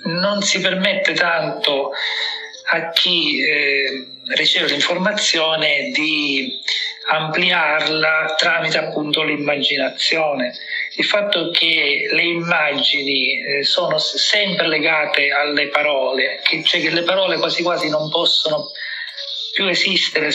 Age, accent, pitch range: 40-59, native, 150-180 Hz